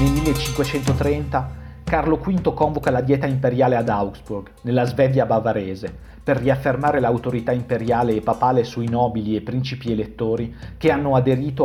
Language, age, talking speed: Italian, 50-69, 140 wpm